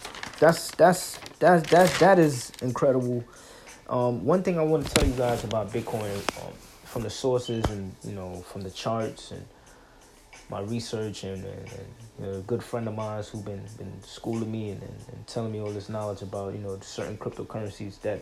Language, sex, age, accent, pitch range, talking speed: English, male, 20-39, American, 105-130 Hz, 200 wpm